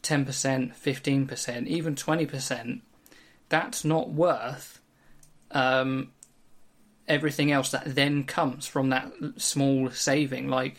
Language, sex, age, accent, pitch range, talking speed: English, male, 20-39, British, 130-150 Hz, 110 wpm